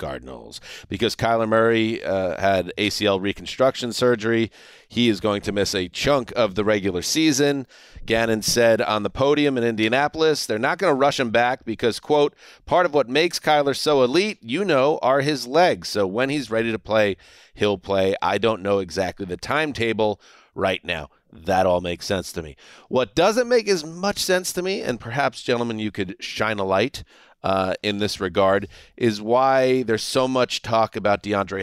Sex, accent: male, American